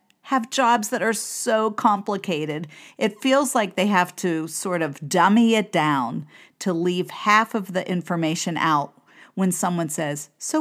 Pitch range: 165-225 Hz